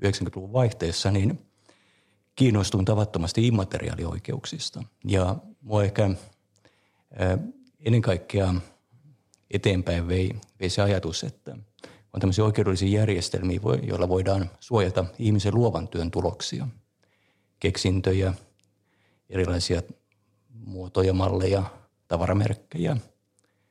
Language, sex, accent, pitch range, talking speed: Finnish, male, native, 95-115 Hz, 85 wpm